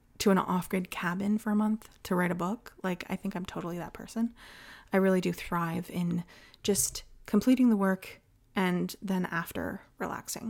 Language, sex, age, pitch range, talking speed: English, female, 20-39, 165-210 Hz, 175 wpm